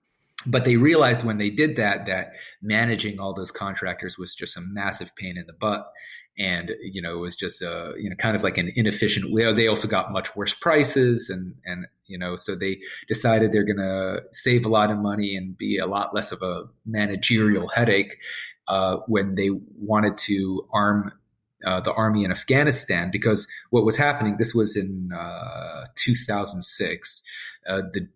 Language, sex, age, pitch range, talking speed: English, male, 30-49, 95-110 Hz, 190 wpm